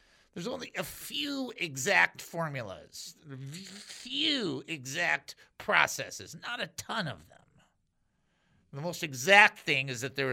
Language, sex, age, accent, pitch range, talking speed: English, male, 50-69, American, 115-175 Hz, 130 wpm